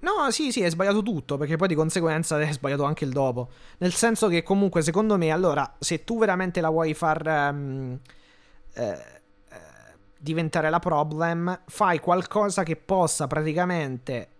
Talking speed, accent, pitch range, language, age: 160 wpm, native, 145-175 Hz, Italian, 20-39